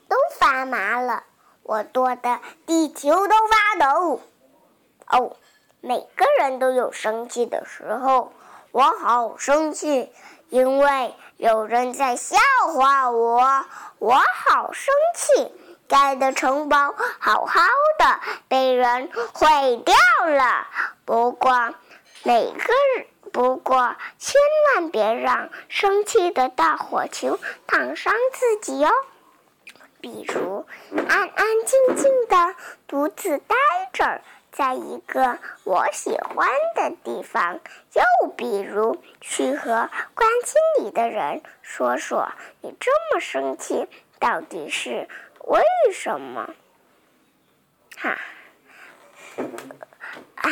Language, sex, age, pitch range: Chinese, male, 50-69, 250-360 Hz